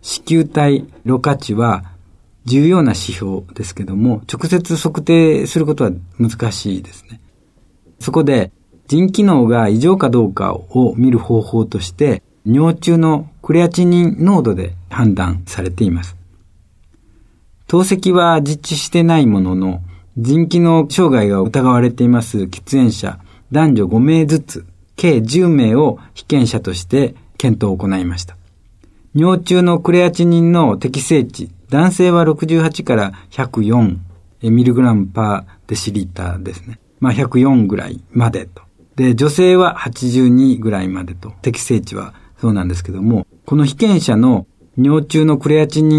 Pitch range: 95-150 Hz